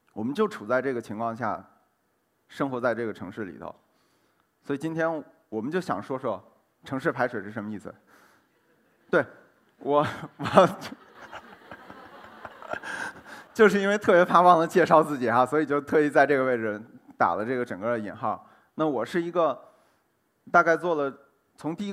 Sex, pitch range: male, 120-170 Hz